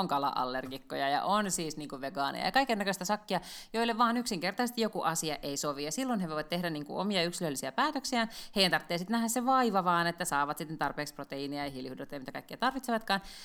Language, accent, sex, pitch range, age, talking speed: Finnish, native, female, 155-215 Hz, 30-49, 200 wpm